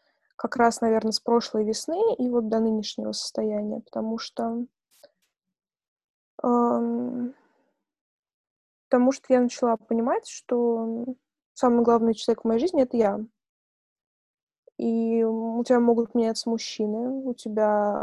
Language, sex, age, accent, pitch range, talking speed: Russian, female, 20-39, native, 215-245 Hz, 115 wpm